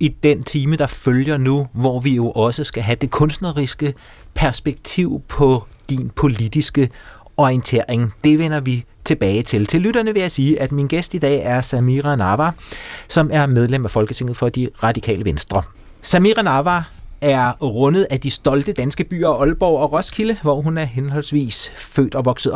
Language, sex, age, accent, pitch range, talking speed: Danish, male, 30-49, native, 115-155 Hz, 175 wpm